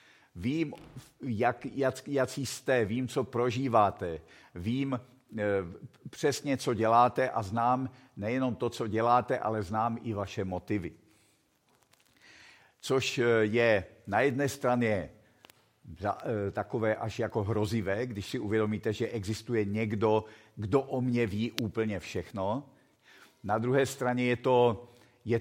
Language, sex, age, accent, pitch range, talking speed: Czech, male, 50-69, native, 105-120 Hz, 115 wpm